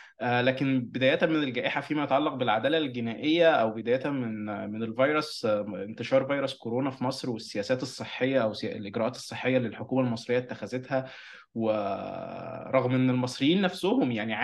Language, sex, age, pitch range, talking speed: Arabic, male, 20-39, 120-150 Hz, 135 wpm